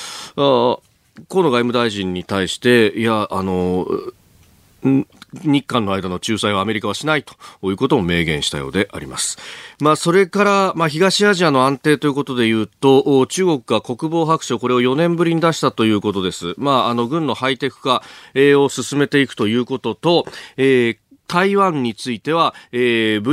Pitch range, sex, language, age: 105-155 Hz, male, Japanese, 40-59